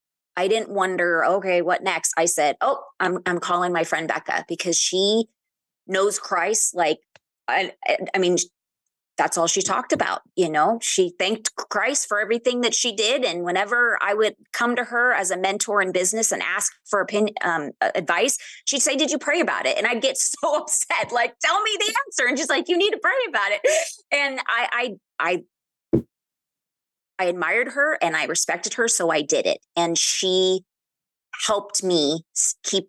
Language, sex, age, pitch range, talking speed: English, female, 20-39, 170-240 Hz, 190 wpm